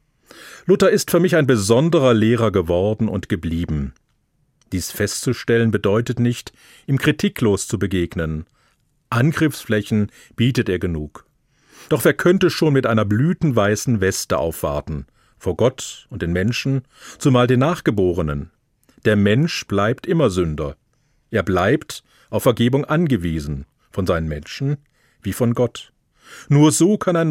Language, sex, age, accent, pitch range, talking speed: German, male, 50-69, German, 95-135 Hz, 130 wpm